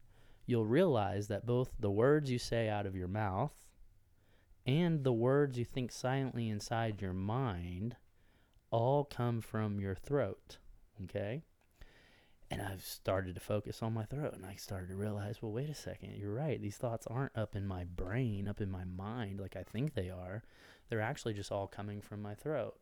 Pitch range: 100-125 Hz